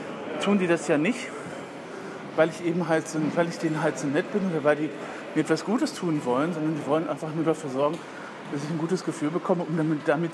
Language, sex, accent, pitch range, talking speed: German, male, German, 150-180 Hz, 240 wpm